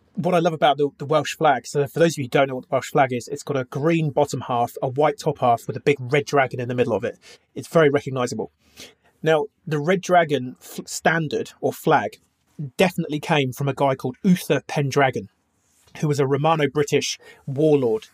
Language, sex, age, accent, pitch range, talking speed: English, male, 30-49, British, 130-160 Hz, 210 wpm